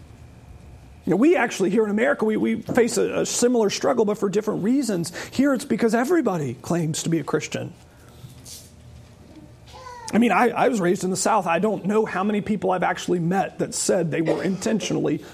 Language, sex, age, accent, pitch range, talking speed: English, male, 40-59, American, 185-255 Hz, 195 wpm